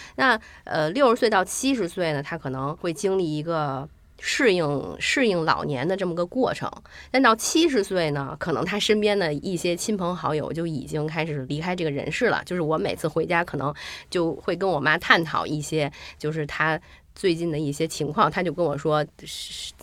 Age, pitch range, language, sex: 20-39, 145-185 Hz, Chinese, female